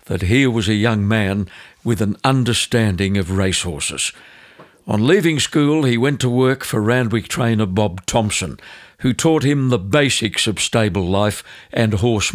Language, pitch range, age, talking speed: English, 105-130 Hz, 60-79, 160 wpm